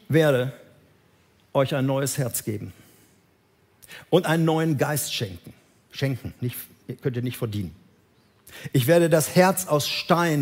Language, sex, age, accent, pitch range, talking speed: German, male, 50-69, German, 115-160 Hz, 125 wpm